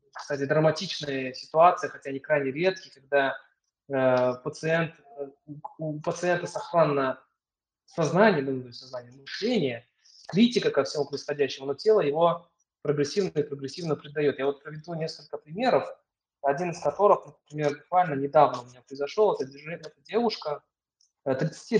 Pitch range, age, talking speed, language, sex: 140-175 Hz, 20-39, 125 wpm, Russian, male